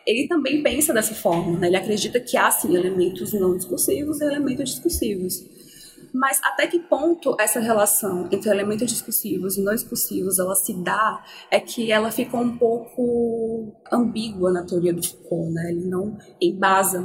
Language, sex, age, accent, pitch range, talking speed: Portuguese, female, 20-39, Brazilian, 185-240 Hz, 160 wpm